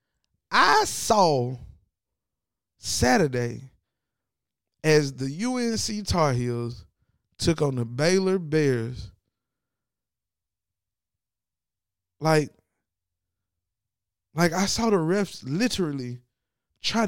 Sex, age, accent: male, 20-39, American